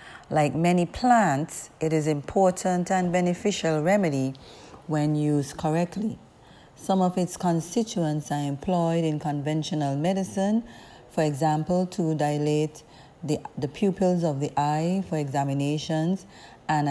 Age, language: 40-59, English